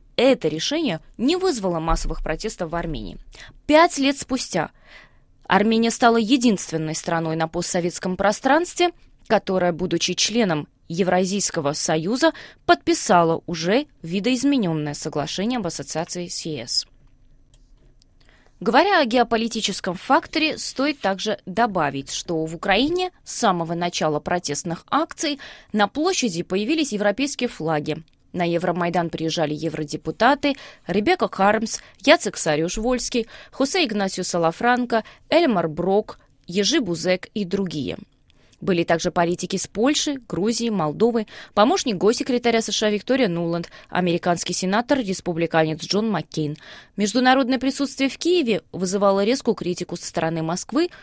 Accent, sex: native, female